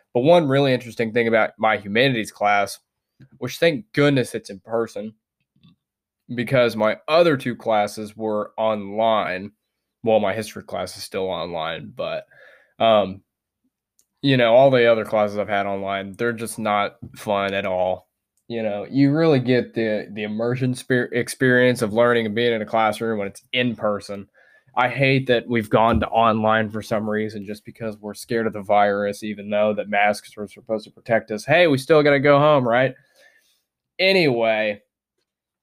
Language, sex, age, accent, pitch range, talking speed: English, male, 20-39, American, 105-130 Hz, 170 wpm